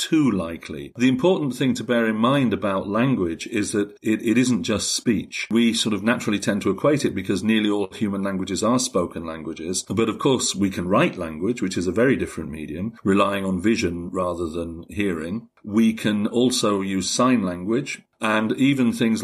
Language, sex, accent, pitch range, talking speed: English, male, British, 95-120 Hz, 195 wpm